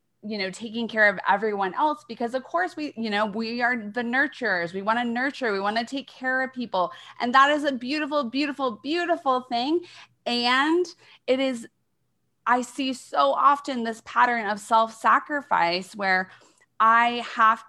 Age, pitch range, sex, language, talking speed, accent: 20-39, 190-245 Hz, female, English, 170 wpm, American